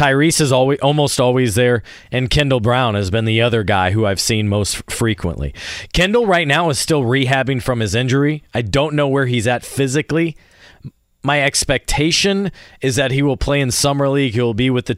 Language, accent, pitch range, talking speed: English, American, 110-135 Hz, 195 wpm